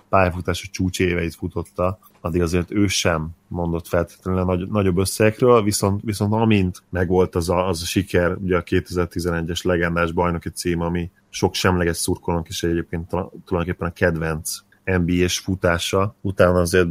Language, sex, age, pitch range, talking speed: Hungarian, male, 30-49, 85-95 Hz, 140 wpm